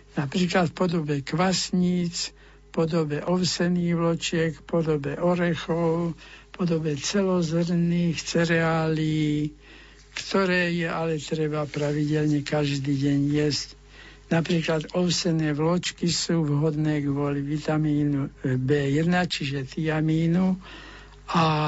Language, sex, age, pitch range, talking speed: Slovak, male, 60-79, 145-170 Hz, 95 wpm